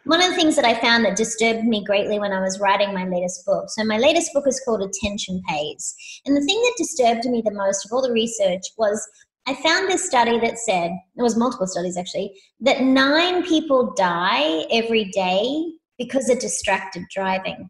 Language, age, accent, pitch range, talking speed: English, 30-49, Australian, 210-290 Hz, 205 wpm